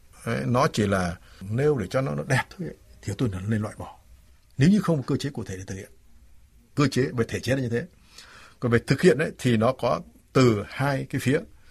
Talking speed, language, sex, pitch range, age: 240 wpm, Vietnamese, male, 110-165 Hz, 60-79